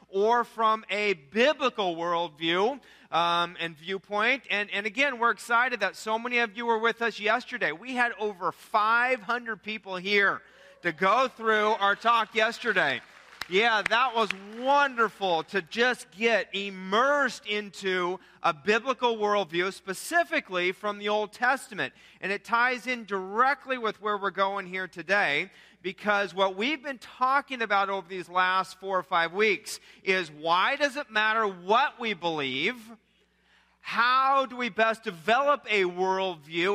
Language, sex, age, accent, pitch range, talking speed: English, male, 40-59, American, 190-240 Hz, 145 wpm